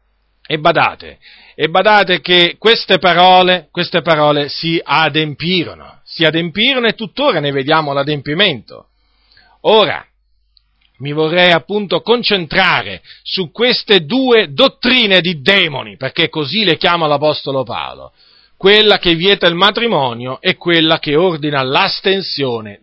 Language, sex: Italian, male